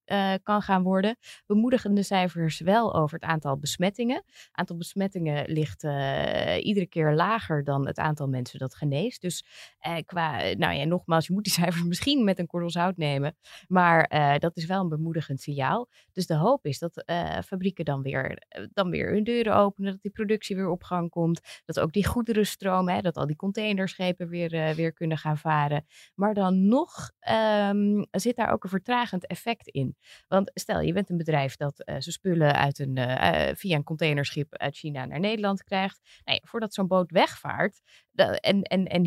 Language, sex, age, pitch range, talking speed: Dutch, female, 20-39, 155-205 Hz, 190 wpm